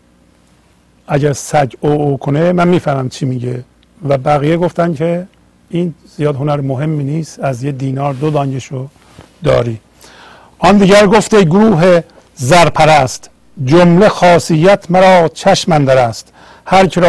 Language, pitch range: Persian, 105-160 Hz